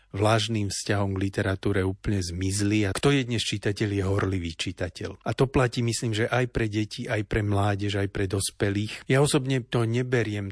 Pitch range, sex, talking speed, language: 100-110 Hz, male, 185 wpm, Slovak